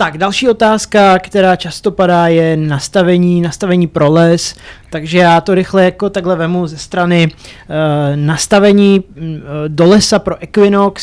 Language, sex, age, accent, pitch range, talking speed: Czech, male, 30-49, native, 160-195 Hz, 145 wpm